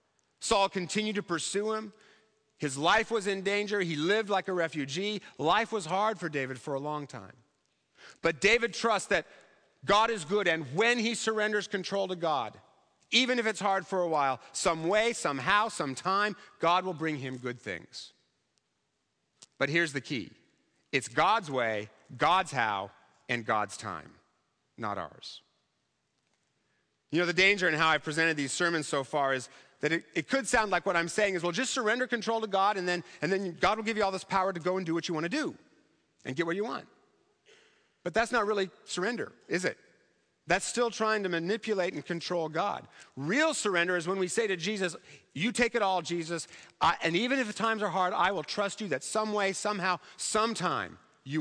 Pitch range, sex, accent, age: 150-210 Hz, male, American, 40-59